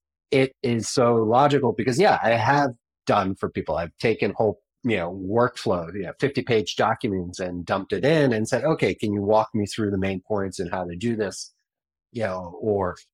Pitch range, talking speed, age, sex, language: 95-125 Hz, 205 wpm, 30-49, male, English